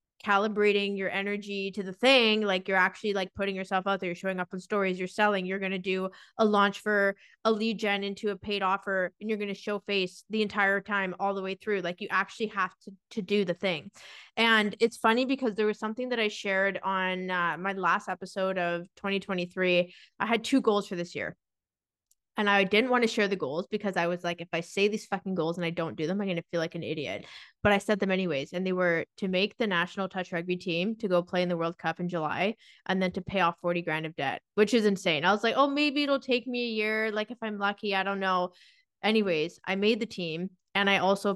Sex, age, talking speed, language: female, 20-39, 250 wpm, English